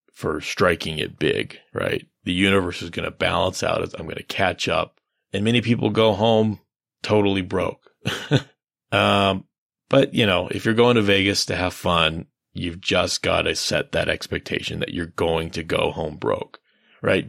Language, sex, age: English, male, 30-49